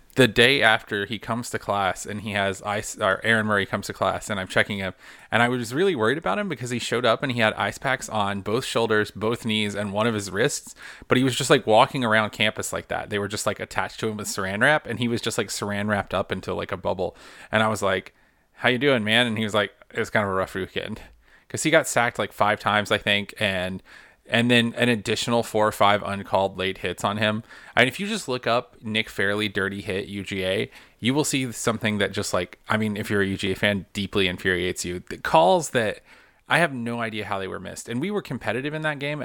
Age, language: 30-49, English